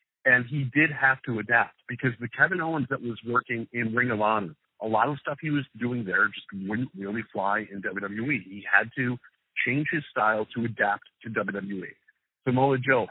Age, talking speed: 40-59, 195 wpm